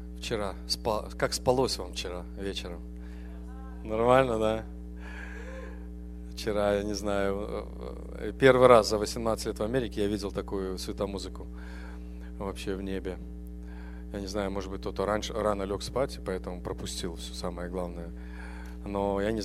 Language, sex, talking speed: English, male, 140 wpm